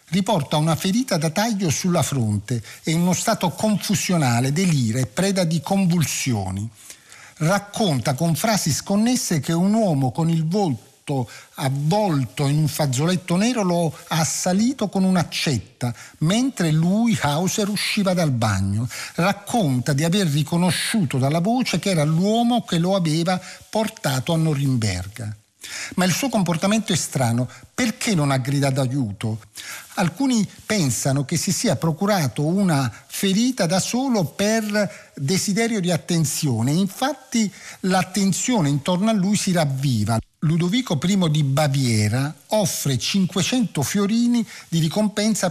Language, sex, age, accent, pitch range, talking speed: Italian, male, 50-69, native, 135-195 Hz, 130 wpm